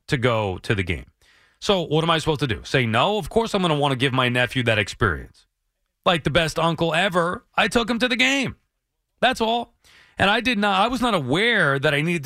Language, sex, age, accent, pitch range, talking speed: English, male, 30-49, American, 115-155 Hz, 245 wpm